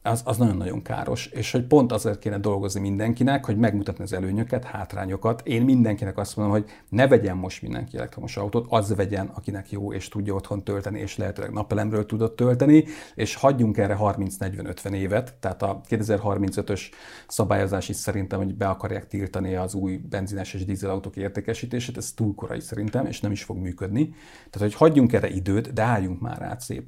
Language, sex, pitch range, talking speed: Hungarian, male, 100-110 Hz, 175 wpm